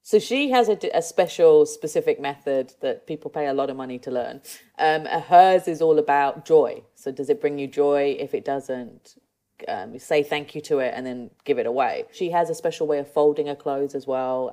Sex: female